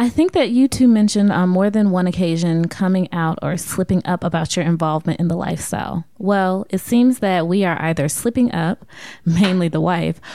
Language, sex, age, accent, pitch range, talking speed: English, female, 20-39, American, 170-215 Hz, 195 wpm